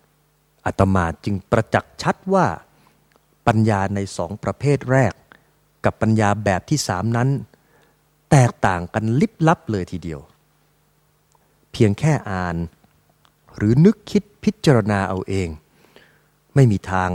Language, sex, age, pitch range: English, male, 30-49, 100-135 Hz